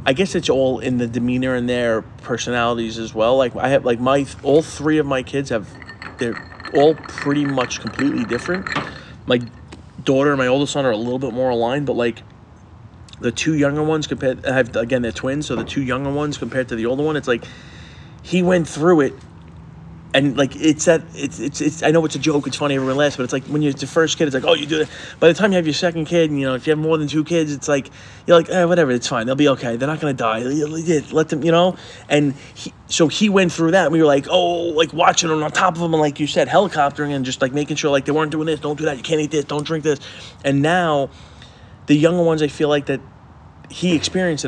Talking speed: 255 wpm